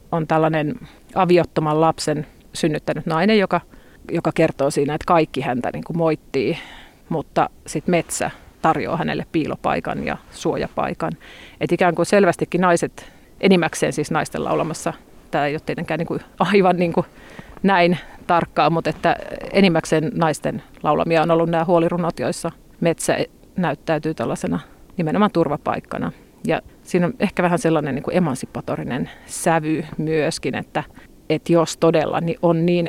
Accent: native